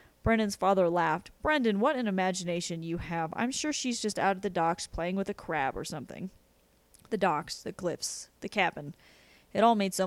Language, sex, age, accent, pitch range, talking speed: English, female, 30-49, American, 170-225 Hz, 195 wpm